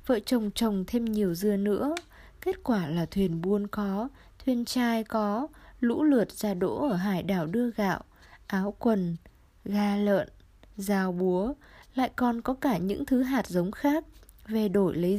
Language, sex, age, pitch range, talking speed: Vietnamese, female, 20-39, 195-250 Hz, 170 wpm